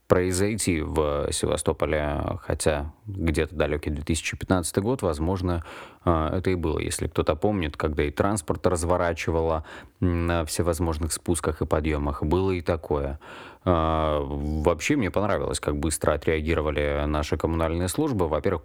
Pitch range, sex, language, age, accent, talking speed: 75-90 Hz, male, Russian, 30-49, native, 120 wpm